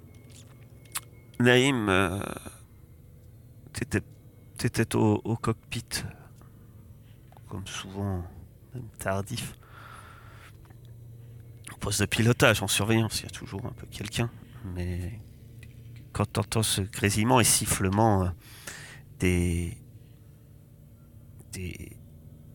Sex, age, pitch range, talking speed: male, 30-49, 105-125 Hz, 95 wpm